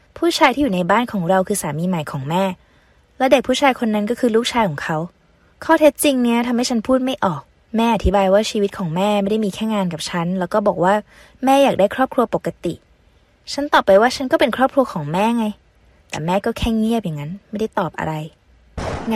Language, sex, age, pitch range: Thai, female, 20-39, 180-235 Hz